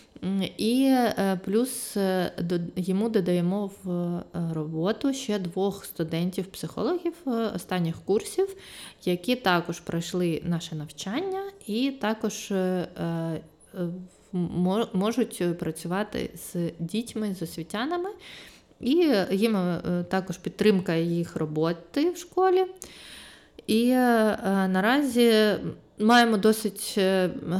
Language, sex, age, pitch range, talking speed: Ukrainian, female, 20-39, 180-235 Hz, 80 wpm